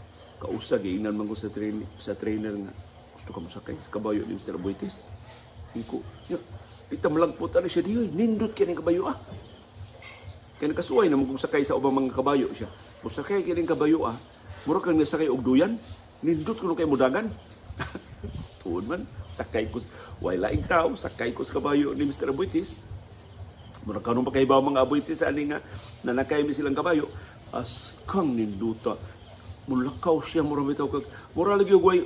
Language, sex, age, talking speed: Filipino, male, 50-69, 175 wpm